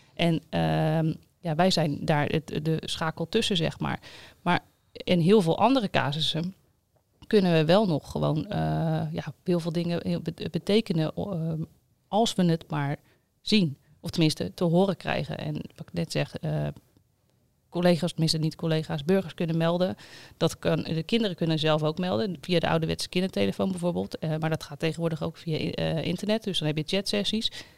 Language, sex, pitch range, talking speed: Dutch, female, 155-185 Hz, 160 wpm